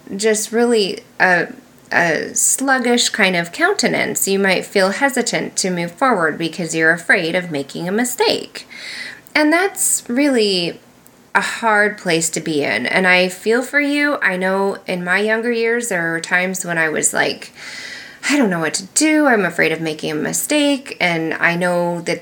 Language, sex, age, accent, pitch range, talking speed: English, female, 20-39, American, 175-230 Hz, 175 wpm